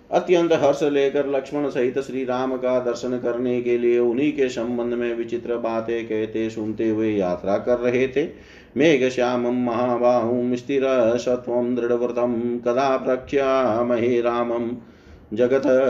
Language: Hindi